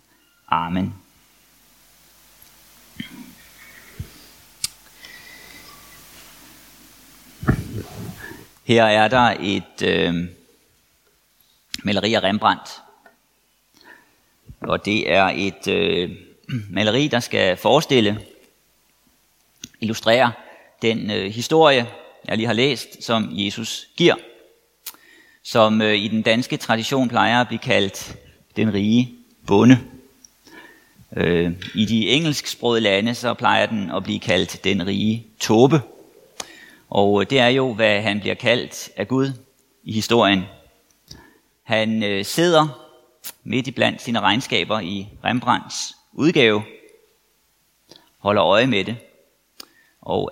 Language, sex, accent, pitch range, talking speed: Danish, male, native, 105-135 Hz, 95 wpm